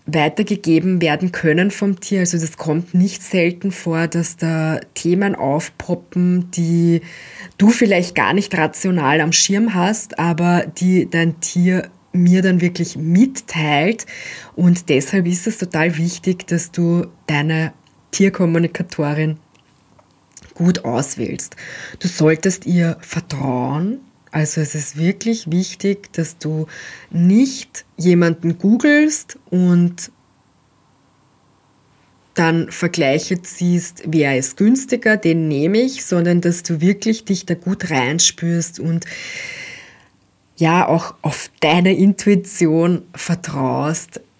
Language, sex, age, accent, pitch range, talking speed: German, female, 20-39, German, 160-185 Hz, 110 wpm